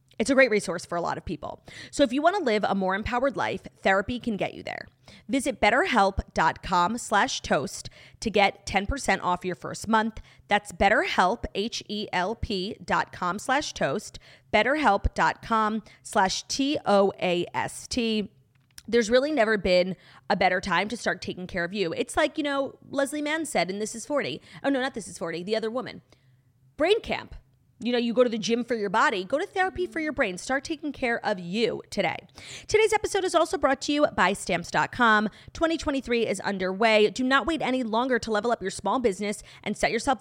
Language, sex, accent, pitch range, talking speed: English, female, American, 185-270 Hz, 185 wpm